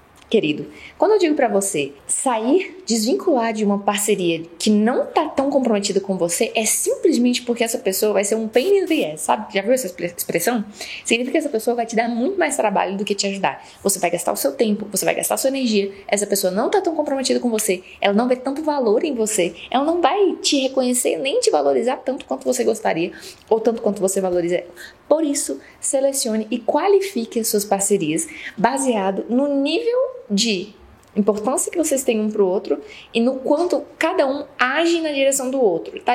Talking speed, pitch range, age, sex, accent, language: 205 wpm, 205-275 Hz, 20-39, female, Brazilian, Portuguese